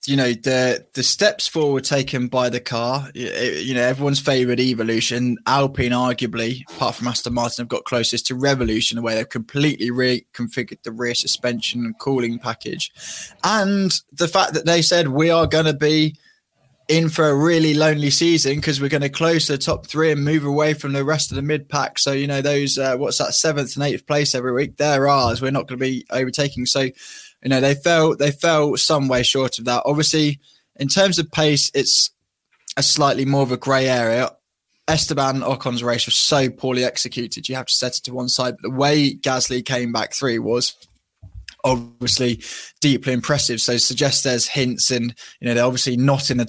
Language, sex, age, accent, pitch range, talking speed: English, male, 20-39, British, 120-145 Hz, 200 wpm